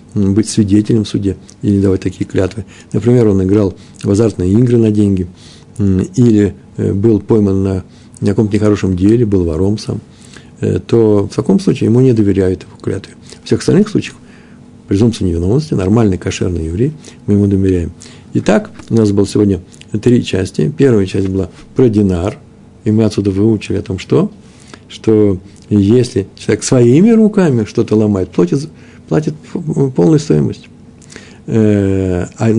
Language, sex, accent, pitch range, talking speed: Russian, male, native, 100-120 Hz, 140 wpm